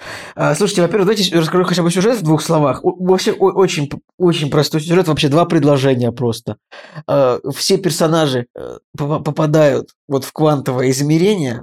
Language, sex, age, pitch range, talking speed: Russian, male, 20-39, 135-160 Hz, 145 wpm